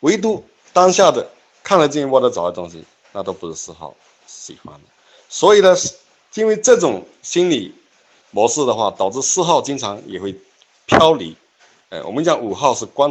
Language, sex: Chinese, male